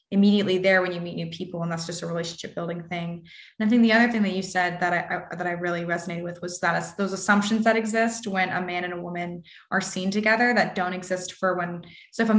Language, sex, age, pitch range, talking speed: English, female, 20-39, 175-210 Hz, 265 wpm